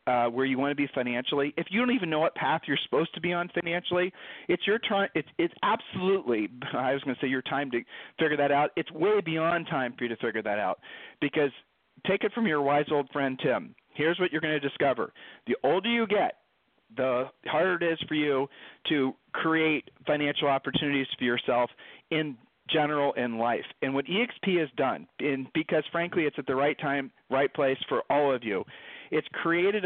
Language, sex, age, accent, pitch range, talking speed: English, male, 40-59, American, 130-170 Hz, 210 wpm